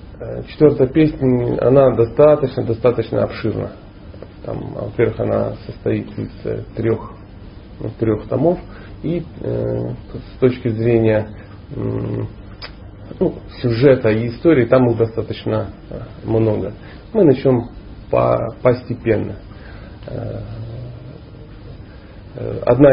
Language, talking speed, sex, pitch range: Russian, 90 wpm, male, 105-130 Hz